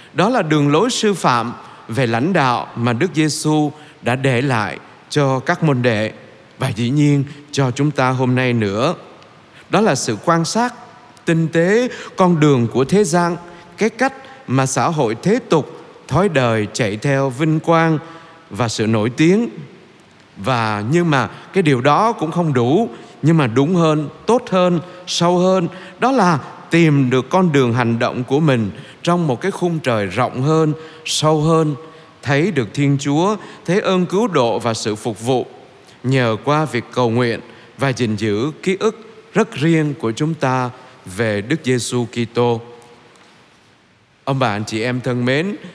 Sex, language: male, Vietnamese